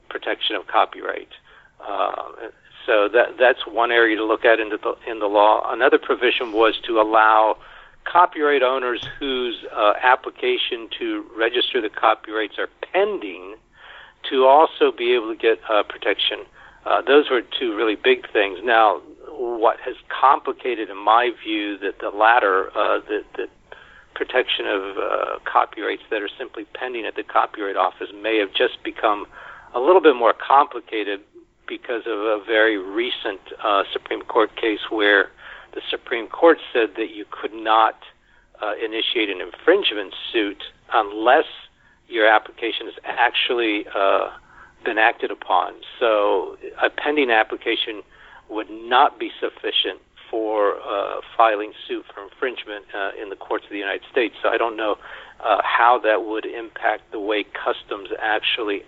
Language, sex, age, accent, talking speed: English, male, 60-79, American, 150 wpm